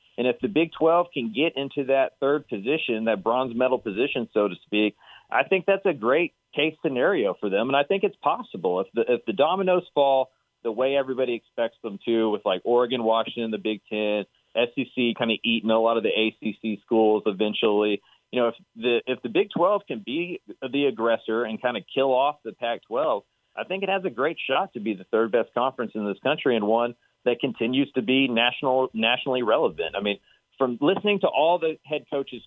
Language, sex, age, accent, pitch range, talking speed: English, male, 30-49, American, 110-155 Hz, 215 wpm